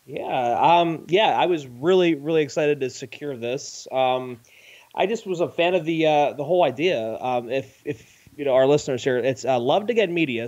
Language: English